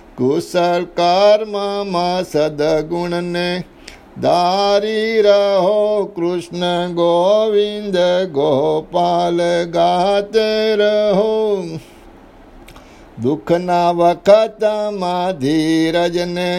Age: 60-79